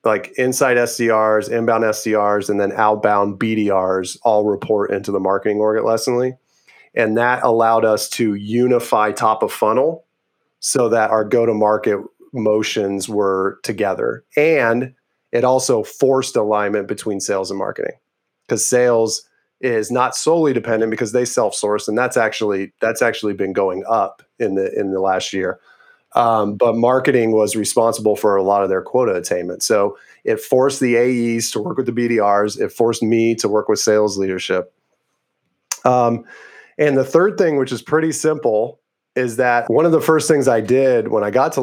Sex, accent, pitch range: male, American, 105-130 Hz